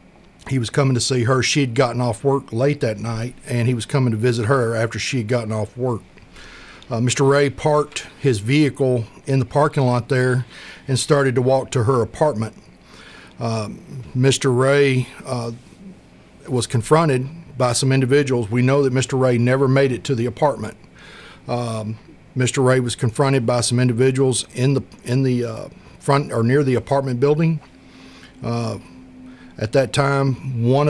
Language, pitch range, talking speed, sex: English, 120-140 Hz, 175 wpm, male